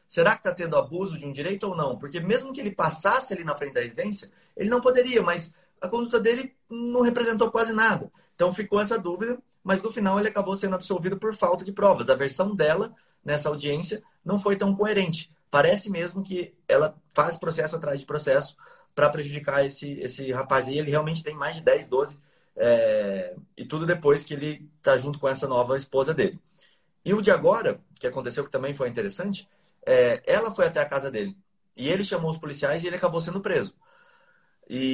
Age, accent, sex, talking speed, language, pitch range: 30-49, Brazilian, male, 200 wpm, Portuguese, 155-220 Hz